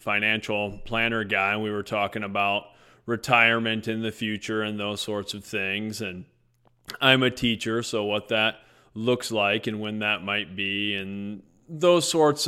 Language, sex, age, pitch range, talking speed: English, male, 30-49, 110-135 Hz, 165 wpm